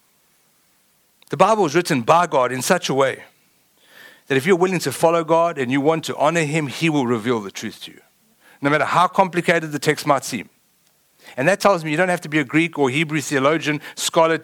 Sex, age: male, 60-79